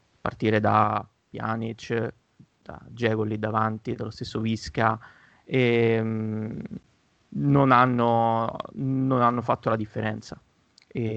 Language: Italian